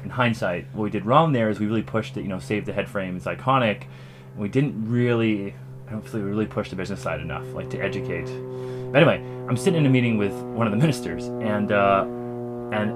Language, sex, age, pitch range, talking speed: English, male, 20-39, 100-125 Hz, 225 wpm